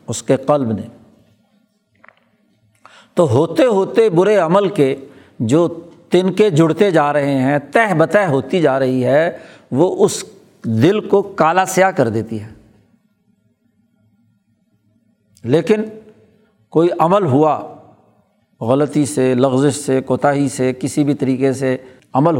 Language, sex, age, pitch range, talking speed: Urdu, male, 60-79, 135-205 Hz, 125 wpm